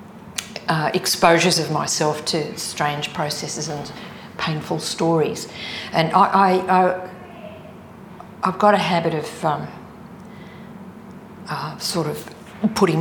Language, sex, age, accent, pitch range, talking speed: English, female, 50-69, Australian, 155-185 Hz, 110 wpm